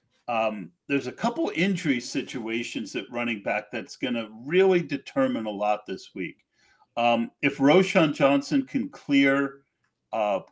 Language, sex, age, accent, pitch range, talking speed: English, male, 50-69, American, 125-185 Hz, 145 wpm